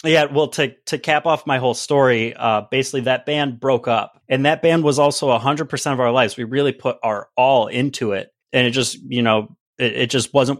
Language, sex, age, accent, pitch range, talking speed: English, male, 30-49, American, 105-125 Hz, 240 wpm